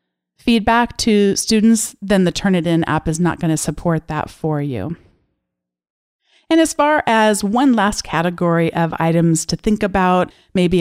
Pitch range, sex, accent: 165-205 Hz, female, American